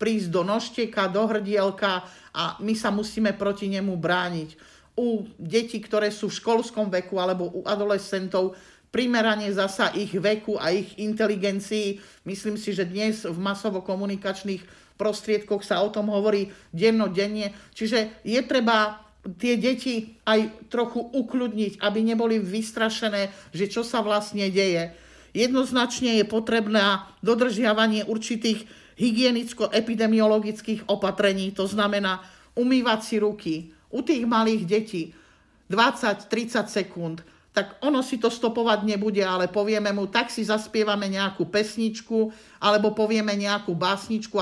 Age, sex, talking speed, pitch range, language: 50-69, male, 125 wpm, 200-225 Hz, Slovak